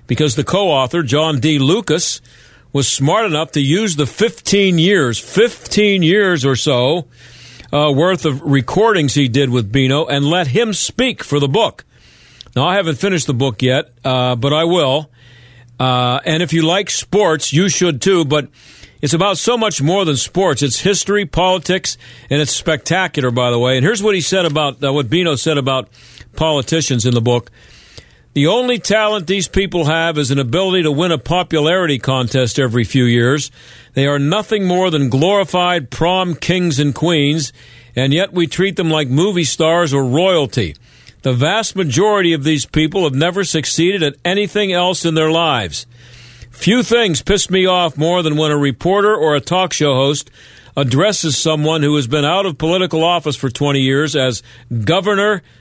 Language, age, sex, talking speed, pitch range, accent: English, 50-69, male, 180 wpm, 135-180 Hz, American